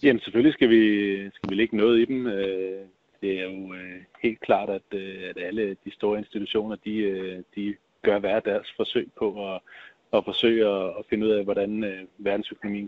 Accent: native